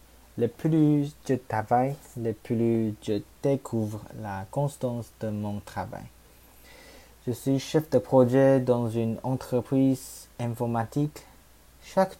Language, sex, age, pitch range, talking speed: French, male, 20-39, 105-130 Hz, 115 wpm